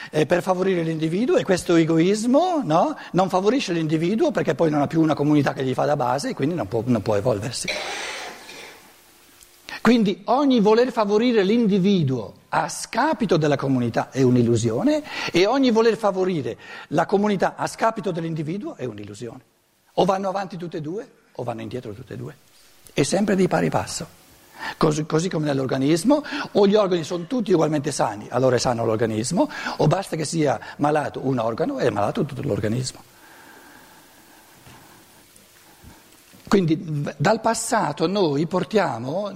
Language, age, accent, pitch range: Italian, 60-79, native, 140-205 Hz